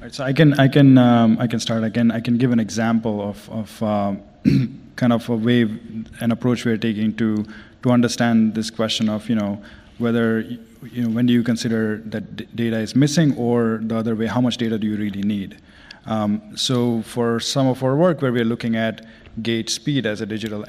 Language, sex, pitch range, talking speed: English, male, 110-120 Hz, 220 wpm